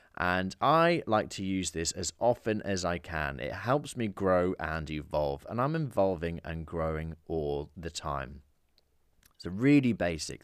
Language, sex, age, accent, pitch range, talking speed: English, male, 30-49, British, 75-110 Hz, 165 wpm